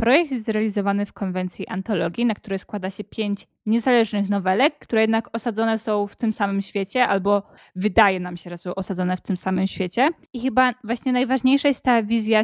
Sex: female